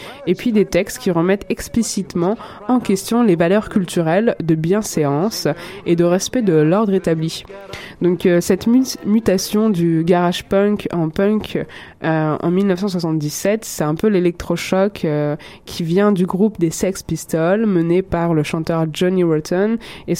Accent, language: French, French